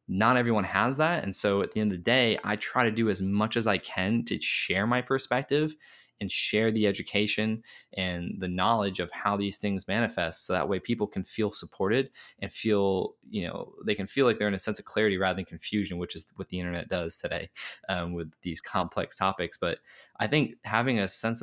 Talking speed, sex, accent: 220 wpm, male, American